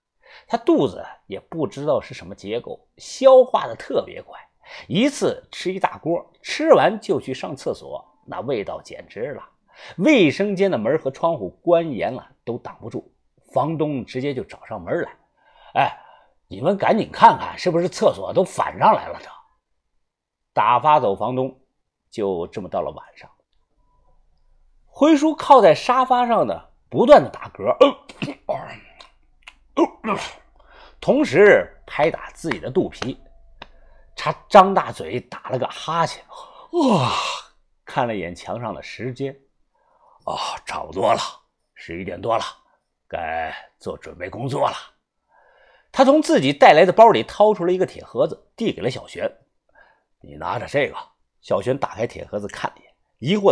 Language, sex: Chinese, male